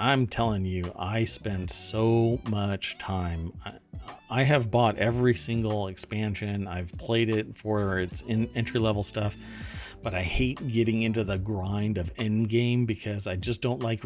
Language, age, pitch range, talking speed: English, 50-69, 95-115 Hz, 155 wpm